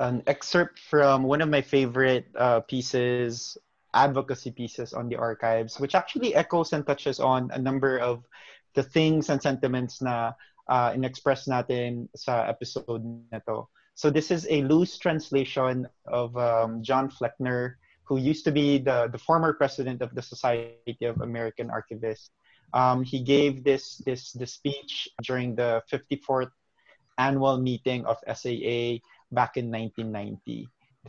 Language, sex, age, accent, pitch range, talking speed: English, male, 20-39, Filipino, 120-140 Hz, 145 wpm